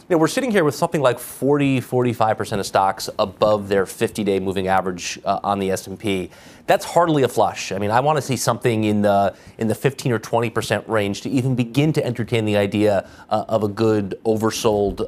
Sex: male